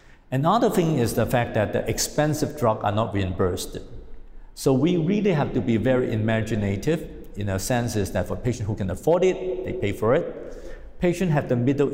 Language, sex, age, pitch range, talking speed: English, male, 50-69, 105-130 Hz, 195 wpm